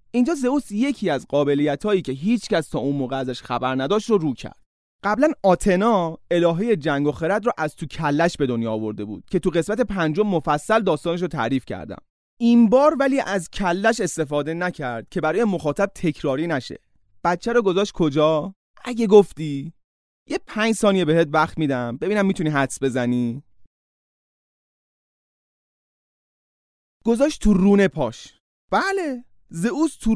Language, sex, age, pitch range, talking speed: Persian, male, 30-49, 150-230 Hz, 150 wpm